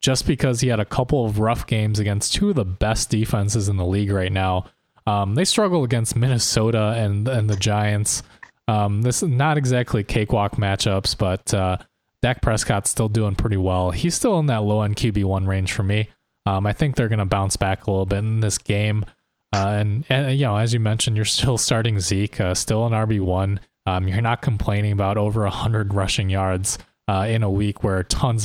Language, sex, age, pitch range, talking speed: English, male, 20-39, 100-125 Hz, 205 wpm